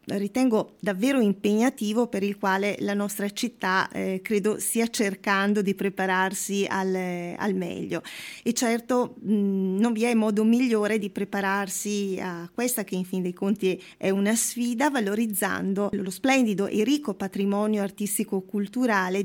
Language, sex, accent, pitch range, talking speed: Italian, female, native, 200-245 Hz, 140 wpm